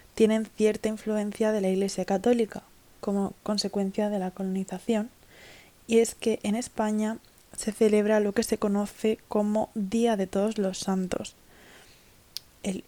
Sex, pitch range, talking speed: female, 200-225 Hz, 140 wpm